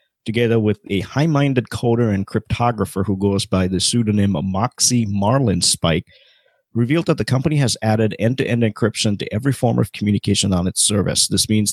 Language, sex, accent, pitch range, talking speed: English, male, American, 100-120 Hz, 170 wpm